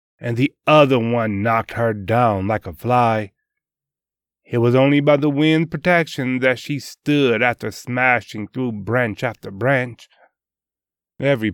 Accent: American